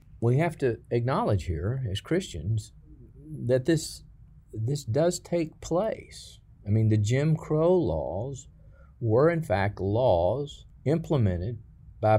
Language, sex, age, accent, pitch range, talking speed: English, male, 50-69, American, 95-125 Hz, 125 wpm